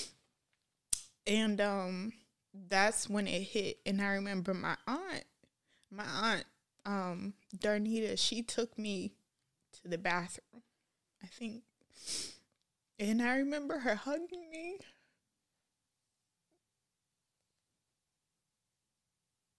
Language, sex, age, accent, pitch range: English, female, 20-39, American, 185-225 Hz